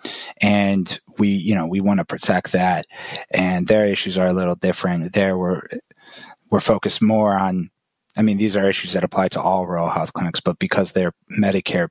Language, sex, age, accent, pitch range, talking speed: English, male, 20-39, American, 95-110 Hz, 185 wpm